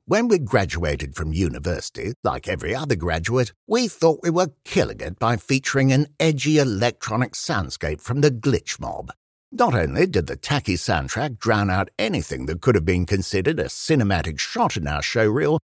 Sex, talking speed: male, 170 wpm